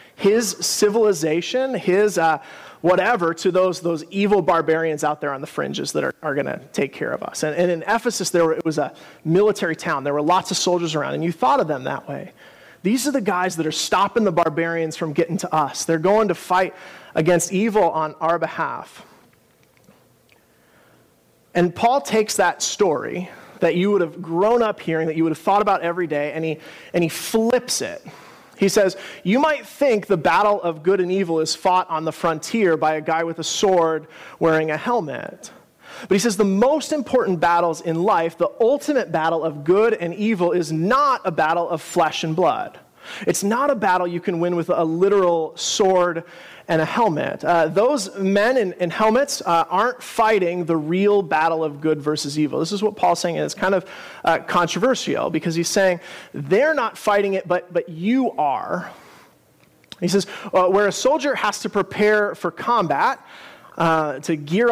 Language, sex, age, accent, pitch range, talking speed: English, male, 30-49, American, 165-210 Hz, 195 wpm